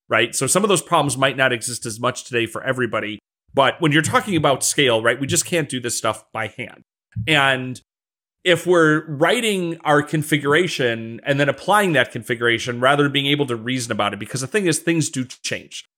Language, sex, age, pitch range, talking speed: English, male, 30-49, 120-155 Hz, 205 wpm